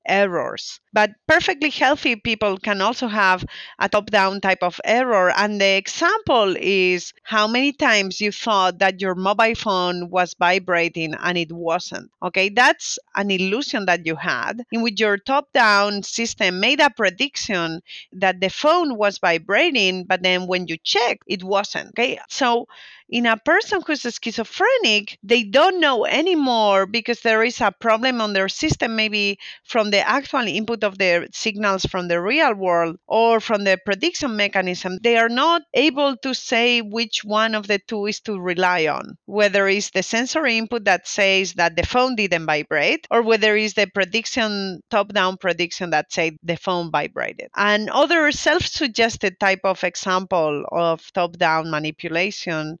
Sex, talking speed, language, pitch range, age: female, 165 wpm, English, 185-235 Hz, 30-49